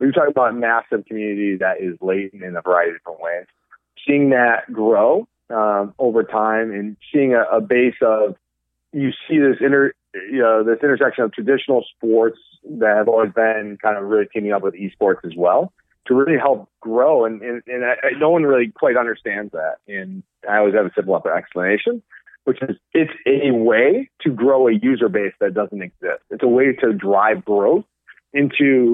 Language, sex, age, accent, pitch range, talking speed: English, male, 30-49, American, 100-130 Hz, 185 wpm